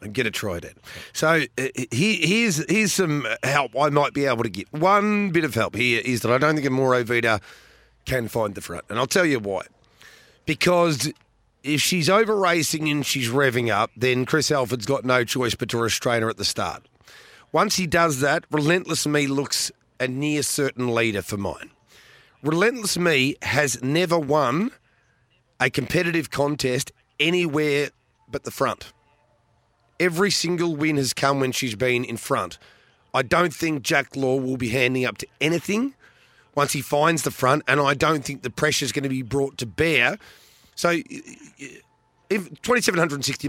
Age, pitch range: 40-59, 125-160 Hz